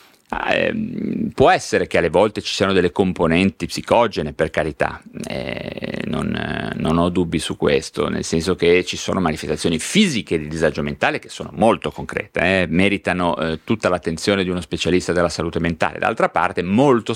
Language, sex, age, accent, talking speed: Italian, male, 30-49, native, 170 wpm